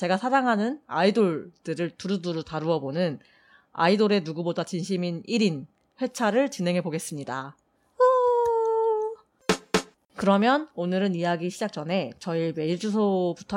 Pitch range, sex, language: 170-230 Hz, female, Korean